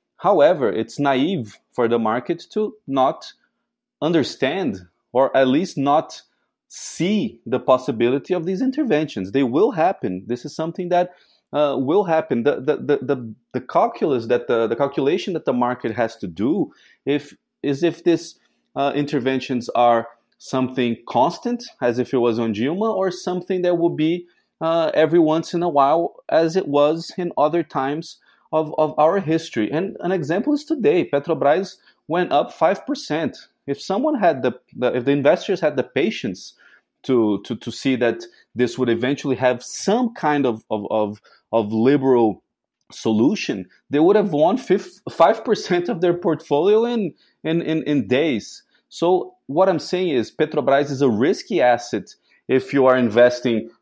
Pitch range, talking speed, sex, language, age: 125-180 Hz, 165 wpm, male, English, 30-49